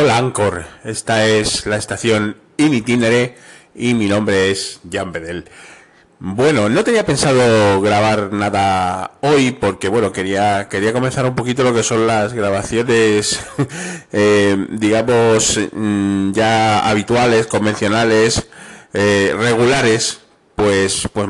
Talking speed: 115 wpm